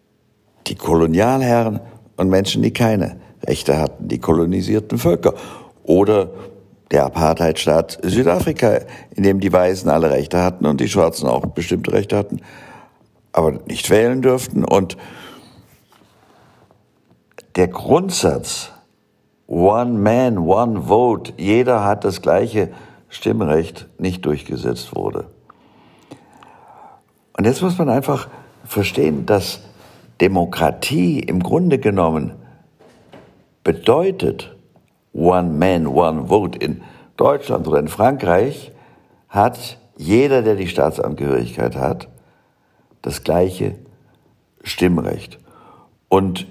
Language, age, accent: German, 60-79, German